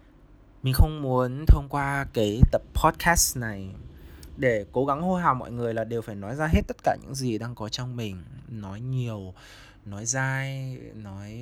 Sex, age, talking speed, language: male, 20-39, 185 wpm, Vietnamese